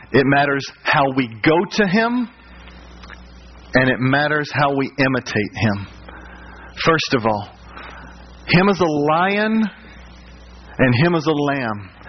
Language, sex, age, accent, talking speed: English, male, 40-59, American, 130 wpm